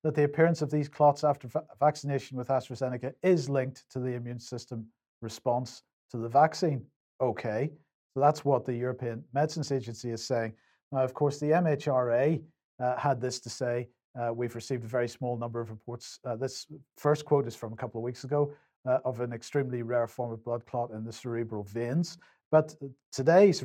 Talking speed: 190 wpm